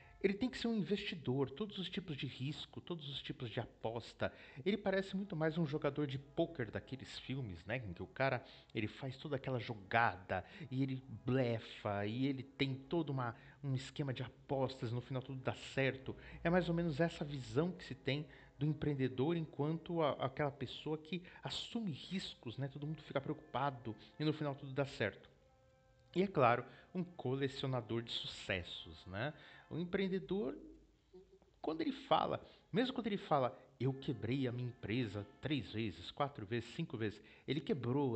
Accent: Brazilian